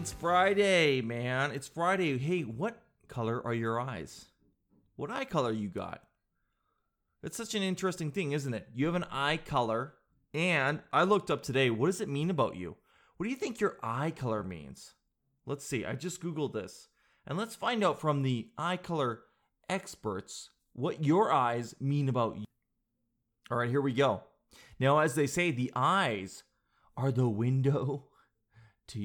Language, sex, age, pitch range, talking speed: English, male, 30-49, 115-155 Hz, 170 wpm